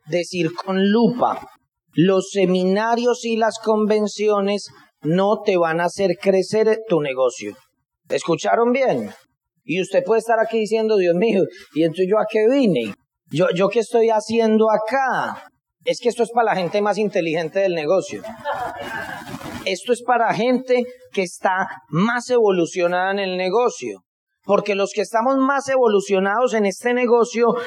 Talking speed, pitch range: 145 wpm, 180-230 Hz